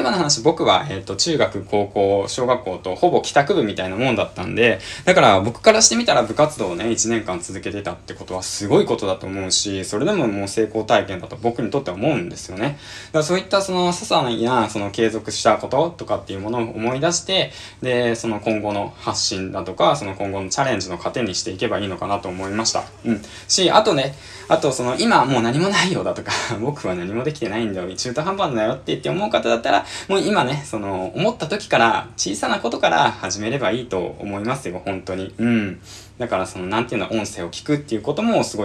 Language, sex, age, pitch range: Japanese, male, 20-39, 95-130 Hz